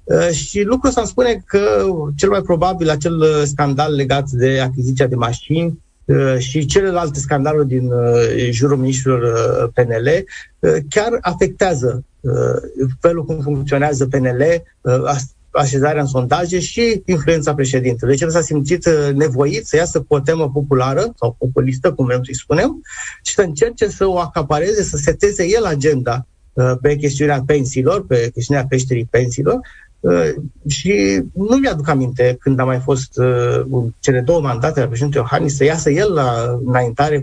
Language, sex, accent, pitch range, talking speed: Romanian, male, native, 130-175 Hz, 145 wpm